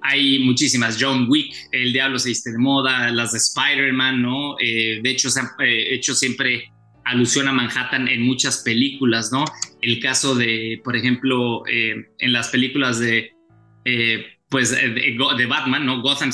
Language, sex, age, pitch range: English, male, 20-39, 120-135 Hz